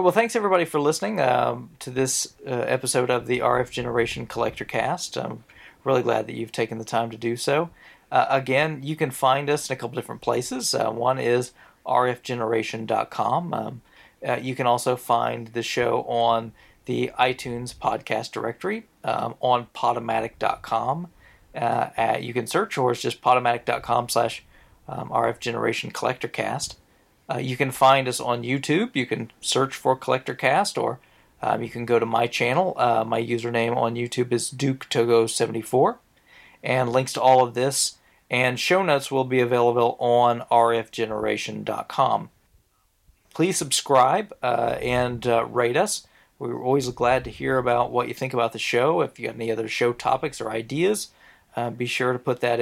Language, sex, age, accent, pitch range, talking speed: English, male, 40-59, American, 115-130 Hz, 165 wpm